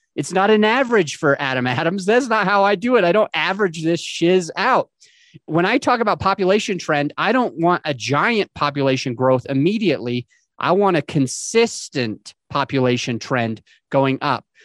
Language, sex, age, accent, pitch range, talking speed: English, male, 30-49, American, 140-205 Hz, 170 wpm